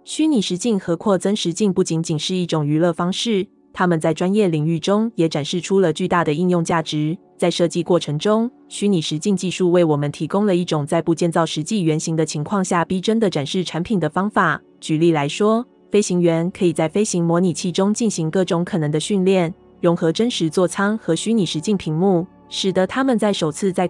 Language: Chinese